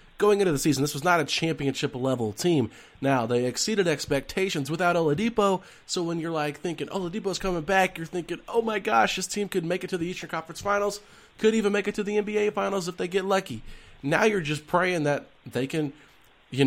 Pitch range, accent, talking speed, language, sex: 135-170 Hz, American, 215 wpm, English, male